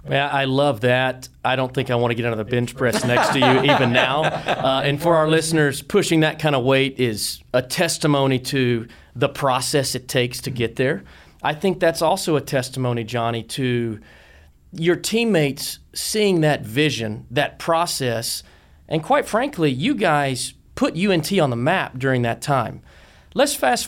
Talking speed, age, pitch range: 180 wpm, 40-59, 120-165 Hz